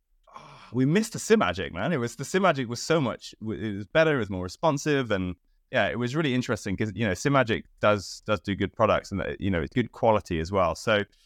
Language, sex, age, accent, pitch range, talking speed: English, male, 20-39, British, 90-115 Hz, 230 wpm